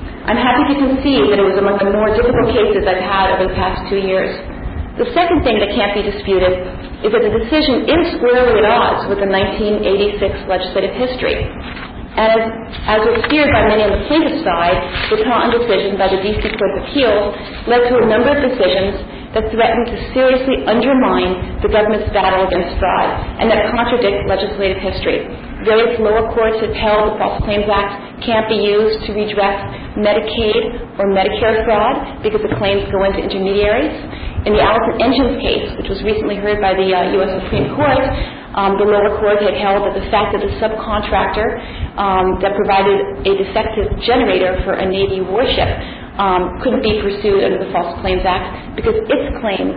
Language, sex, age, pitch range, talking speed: English, female, 40-59, 195-230 Hz, 185 wpm